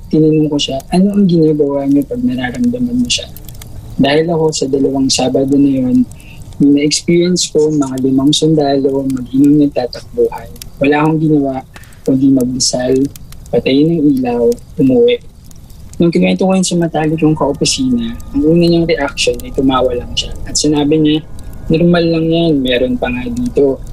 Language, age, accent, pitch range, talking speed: Filipino, 20-39, native, 130-170 Hz, 155 wpm